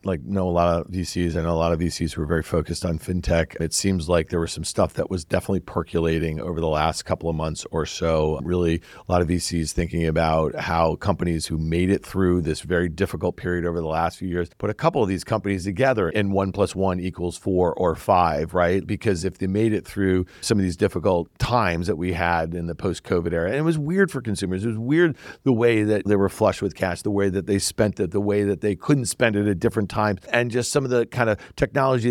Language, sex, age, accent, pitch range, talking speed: English, male, 50-69, American, 90-125 Hz, 250 wpm